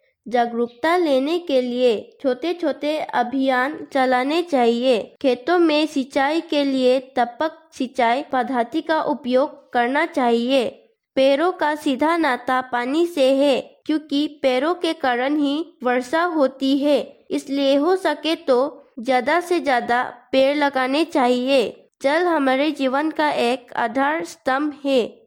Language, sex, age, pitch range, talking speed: English, female, 20-39, 250-310 Hz, 125 wpm